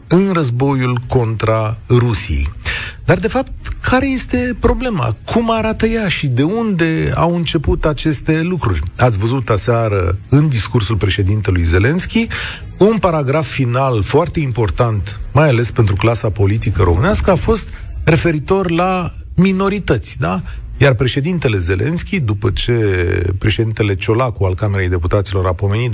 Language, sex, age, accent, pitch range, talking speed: Romanian, male, 40-59, native, 105-155 Hz, 130 wpm